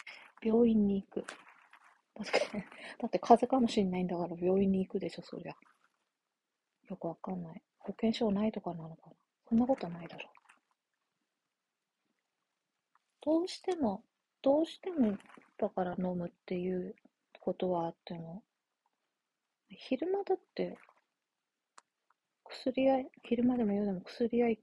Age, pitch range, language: 30-49, 175-235 Hz, Japanese